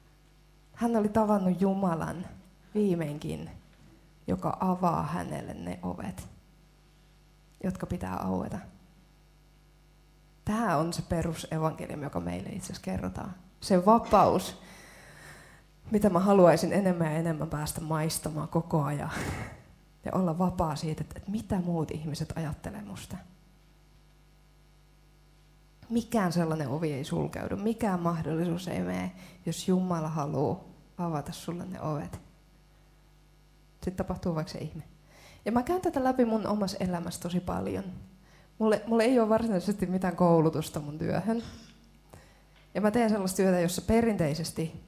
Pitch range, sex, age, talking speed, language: 155-185 Hz, female, 20-39, 120 wpm, Finnish